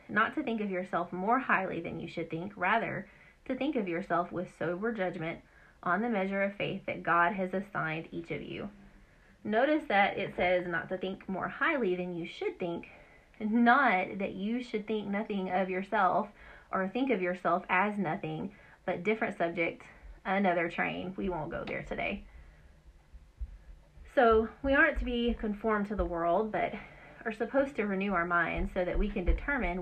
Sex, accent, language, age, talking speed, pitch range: female, American, English, 30-49, 180 wpm, 175-230 Hz